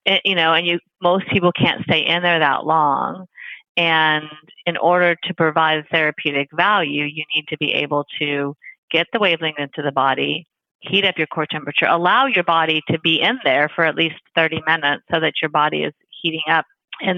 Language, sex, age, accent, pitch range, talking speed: English, female, 30-49, American, 150-170 Hz, 200 wpm